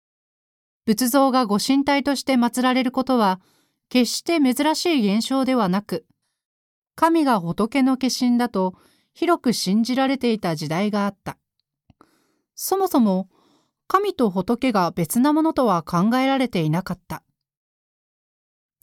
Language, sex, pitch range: Japanese, female, 190-275 Hz